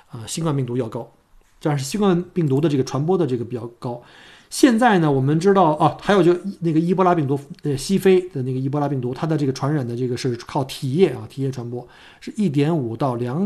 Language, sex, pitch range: Chinese, male, 135-180 Hz